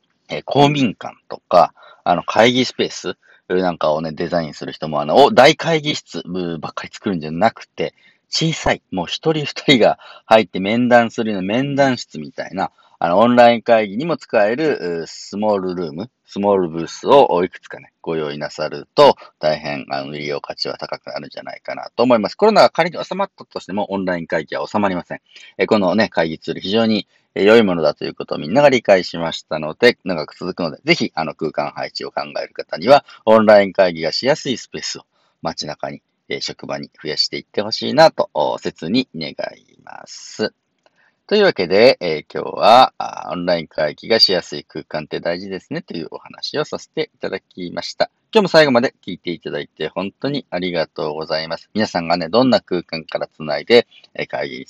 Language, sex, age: Japanese, male, 40-59